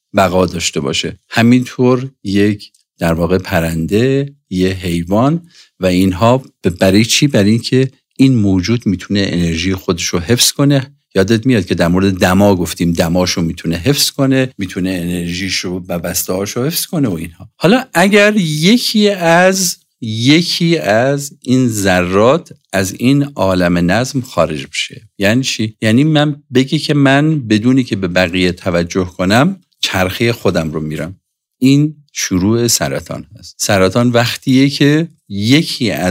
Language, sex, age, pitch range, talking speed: Persian, male, 50-69, 95-140 Hz, 135 wpm